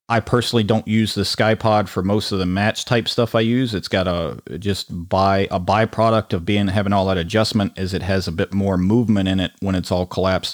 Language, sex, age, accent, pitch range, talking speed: English, male, 30-49, American, 90-110 Hz, 235 wpm